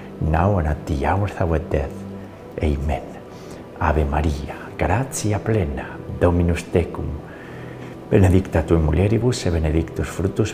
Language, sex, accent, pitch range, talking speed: English, male, Spanish, 75-100 Hz, 120 wpm